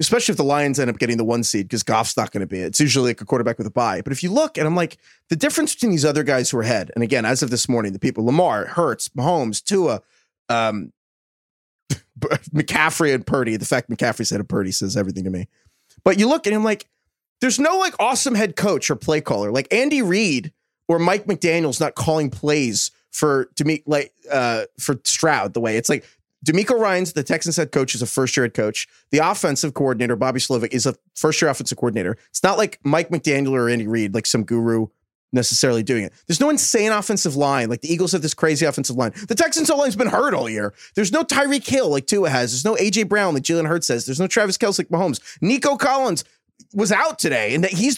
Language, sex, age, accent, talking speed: English, male, 30-49, American, 235 wpm